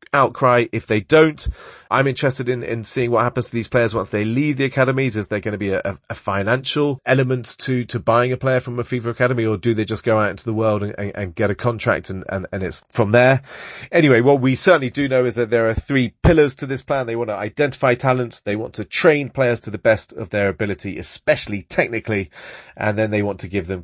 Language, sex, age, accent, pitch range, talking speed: English, male, 30-49, British, 100-125 Hz, 245 wpm